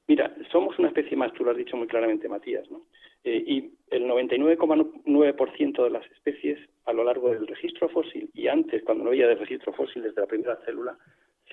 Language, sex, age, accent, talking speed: Spanish, male, 40-59, Spanish, 195 wpm